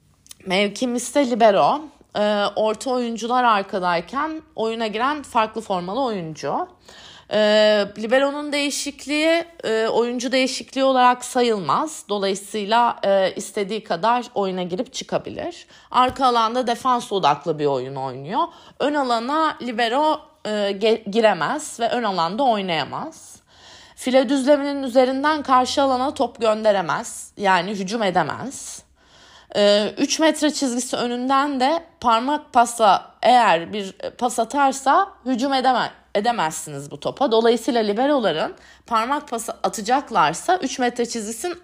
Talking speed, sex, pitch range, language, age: 110 wpm, female, 200-270 Hz, Turkish, 30-49